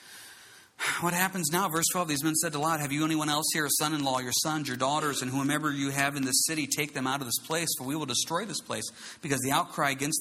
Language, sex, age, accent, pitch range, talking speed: English, male, 40-59, American, 140-185 Hz, 270 wpm